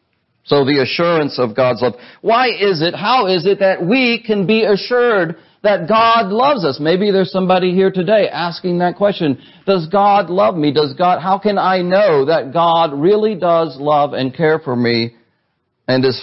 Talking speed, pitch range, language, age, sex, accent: 185 wpm, 130-190 Hz, English, 50-69, male, American